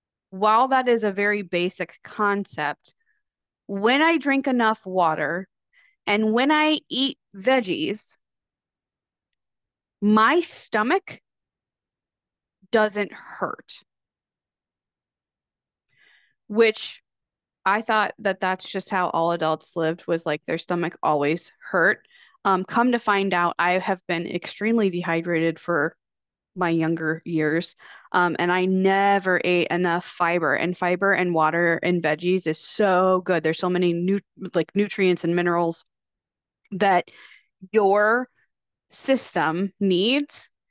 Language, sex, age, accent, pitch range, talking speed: English, female, 20-39, American, 175-220 Hz, 115 wpm